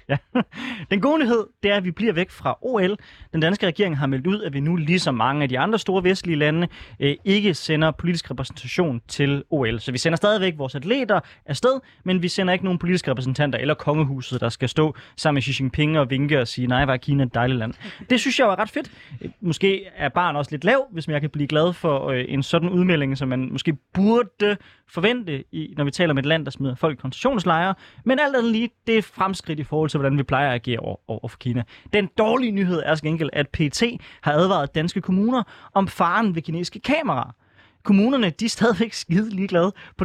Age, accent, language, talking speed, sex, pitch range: 20-39, native, Danish, 220 wpm, male, 140-195 Hz